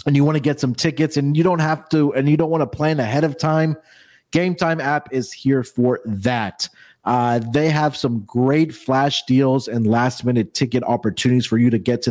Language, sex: English, male